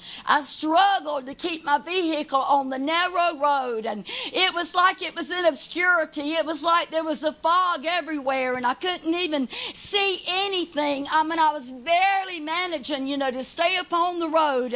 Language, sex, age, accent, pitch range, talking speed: English, female, 50-69, American, 270-345 Hz, 185 wpm